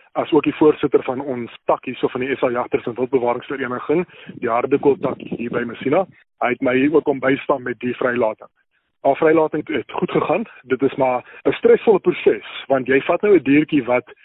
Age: 20-39